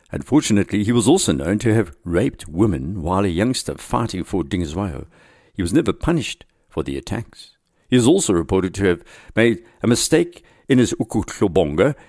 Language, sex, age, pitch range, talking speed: English, male, 60-79, 85-115 Hz, 170 wpm